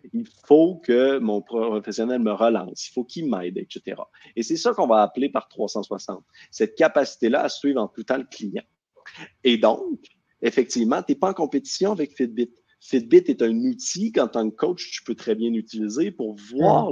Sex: male